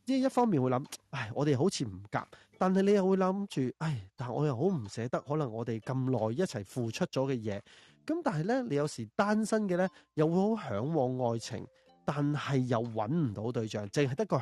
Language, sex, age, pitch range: Chinese, male, 30-49, 115-175 Hz